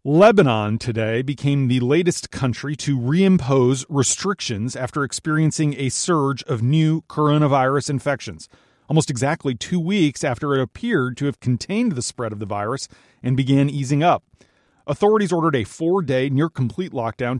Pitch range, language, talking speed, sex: 125-160 Hz, English, 145 wpm, male